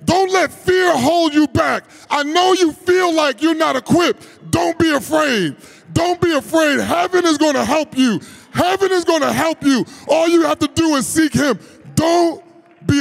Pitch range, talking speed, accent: 205-310 Hz, 195 wpm, American